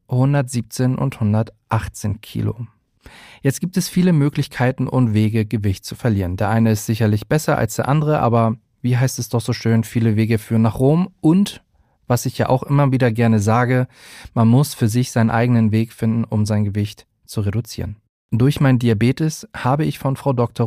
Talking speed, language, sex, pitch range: 185 wpm, German, male, 110-135 Hz